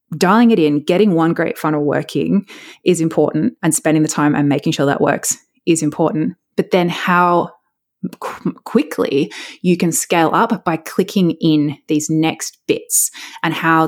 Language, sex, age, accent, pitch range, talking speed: English, female, 20-39, Australian, 155-210 Hz, 165 wpm